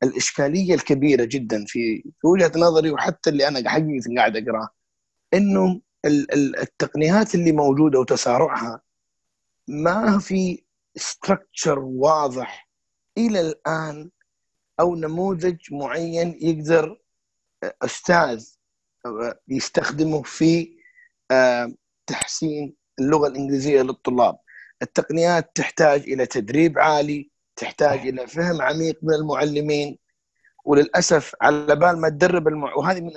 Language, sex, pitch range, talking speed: Arabic, male, 140-170 Hz, 90 wpm